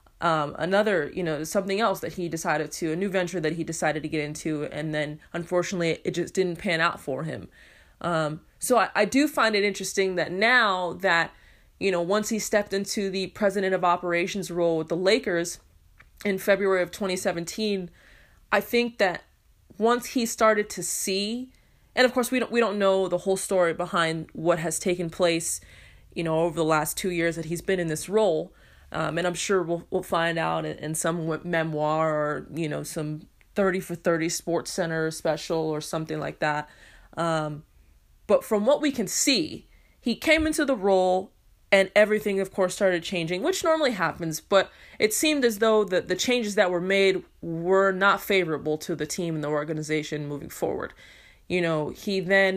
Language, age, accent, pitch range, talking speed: English, 20-39, American, 160-200 Hz, 190 wpm